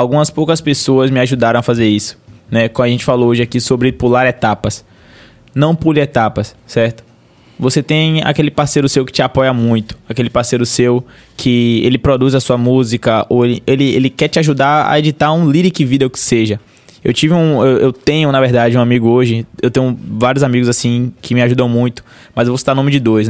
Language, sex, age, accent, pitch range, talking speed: Portuguese, male, 20-39, Brazilian, 120-150 Hz, 210 wpm